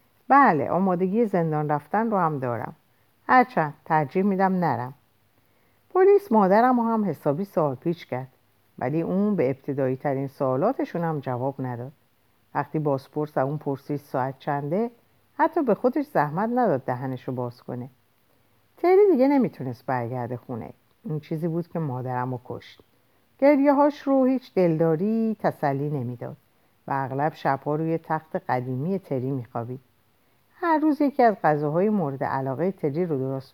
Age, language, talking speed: 50-69, Persian, 140 wpm